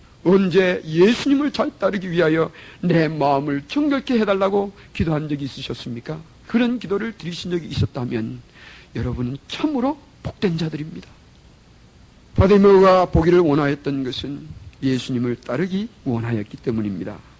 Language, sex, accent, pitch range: Korean, male, native, 140-225 Hz